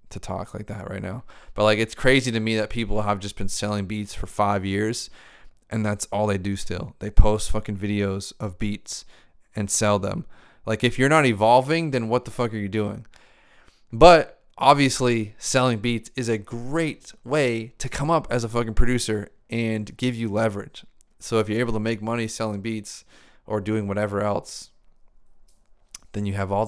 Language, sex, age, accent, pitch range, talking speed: English, male, 20-39, American, 105-120 Hz, 190 wpm